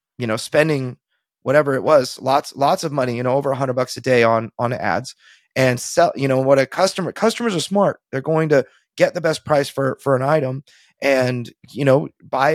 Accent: American